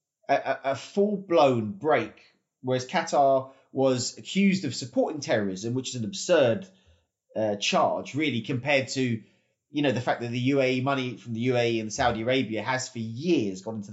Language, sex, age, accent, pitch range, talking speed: English, male, 30-49, British, 120-170 Hz, 170 wpm